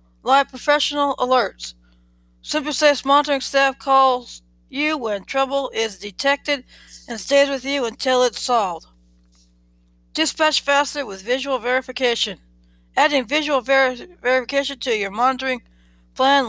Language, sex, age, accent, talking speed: English, female, 60-79, American, 115 wpm